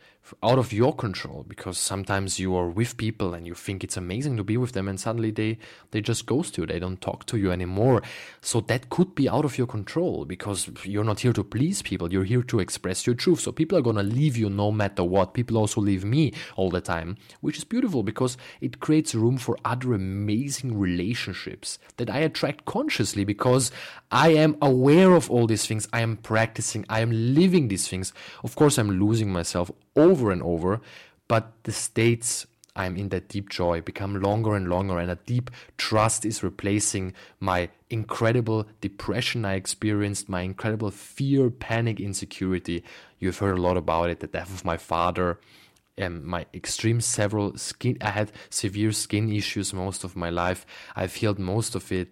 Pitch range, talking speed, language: 95-115 Hz, 190 wpm, English